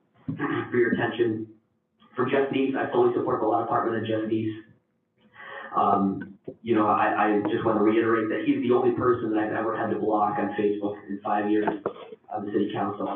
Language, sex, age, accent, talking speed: English, male, 30-49, American, 200 wpm